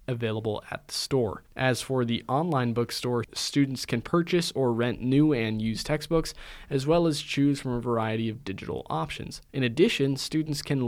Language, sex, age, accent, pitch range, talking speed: English, male, 20-39, American, 120-145 Hz, 175 wpm